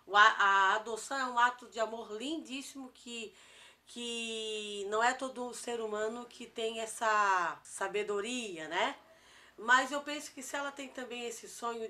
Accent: Brazilian